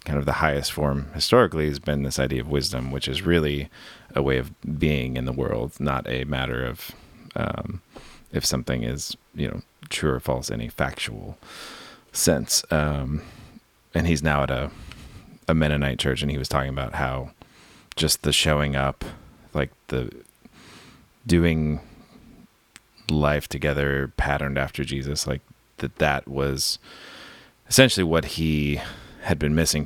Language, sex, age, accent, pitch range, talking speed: English, male, 30-49, American, 70-80 Hz, 150 wpm